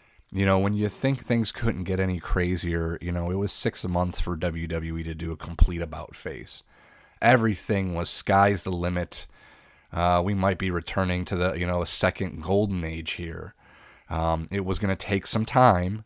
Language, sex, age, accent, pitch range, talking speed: English, male, 30-49, American, 85-95 Hz, 190 wpm